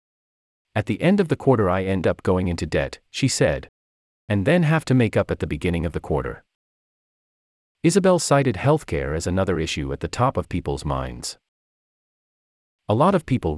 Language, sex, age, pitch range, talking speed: English, male, 30-49, 75-120 Hz, 185 wpm